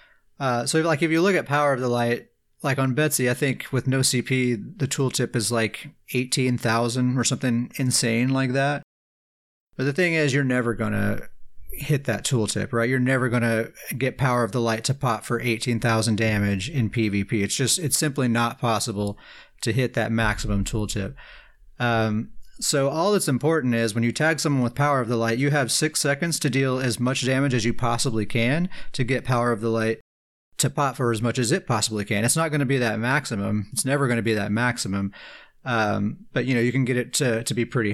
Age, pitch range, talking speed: 30-49, 115-135 Hz, 215 wpm